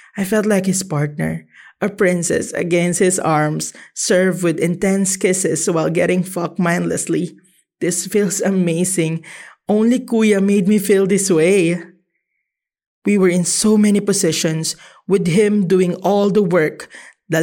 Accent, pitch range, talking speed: Filipino, 170-205 Hz, 140 wpm